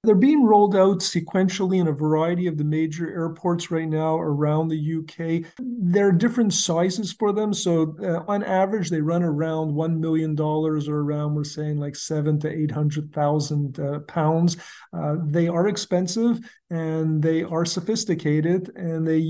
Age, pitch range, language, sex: 50-69, 150-175 Hz, English, male